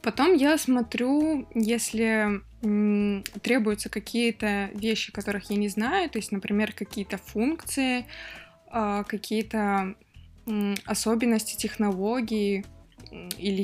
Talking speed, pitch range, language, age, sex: 90 wpm, 200-235 Hz, Russian, 20-39, female